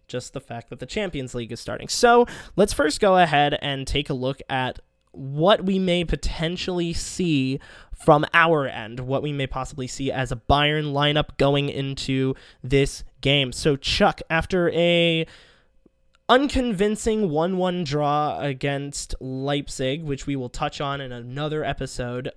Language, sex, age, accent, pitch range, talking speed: English, male, 20-39, American, 130-165 Hz, 155 wpm